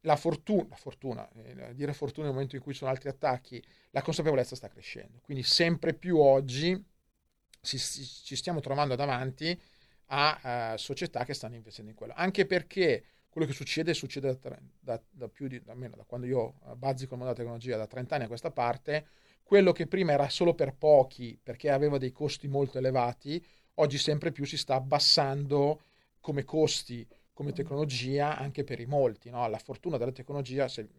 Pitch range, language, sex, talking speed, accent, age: 125-150 Hz, Italian, male, 175 wpm, native, 40-59